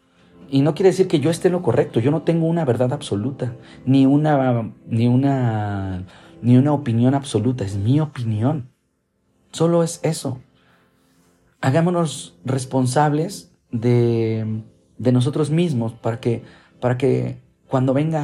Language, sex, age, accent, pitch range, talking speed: Spanish, male, 40-59, Mexican, 115-155 Hz, 140 wpm